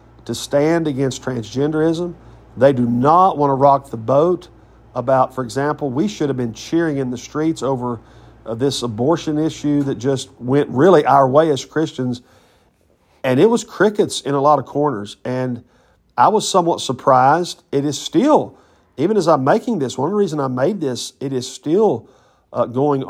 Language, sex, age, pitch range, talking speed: English, male, 50-69, 120-140 Hz, 175 wpm